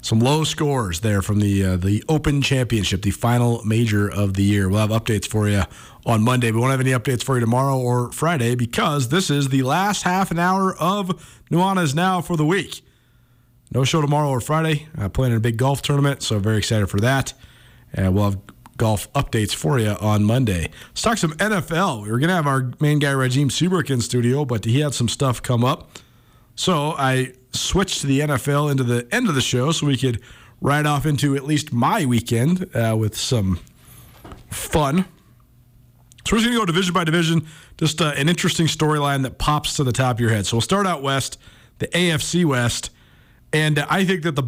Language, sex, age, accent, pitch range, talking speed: English, male, 40-59, American, 115-150 Hz, 215 wpm